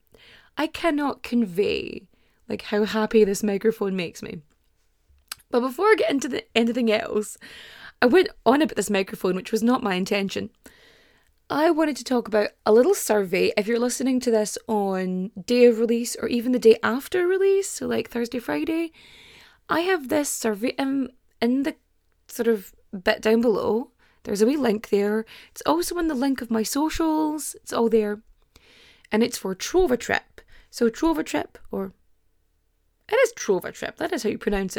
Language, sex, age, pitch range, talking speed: English, female, 20-39, 210-310 Hz, 175 wpm